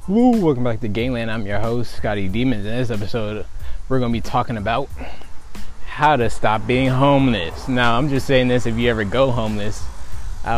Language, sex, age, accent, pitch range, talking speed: English, male, 20-39, American, 100-125 Hz, 195 wpm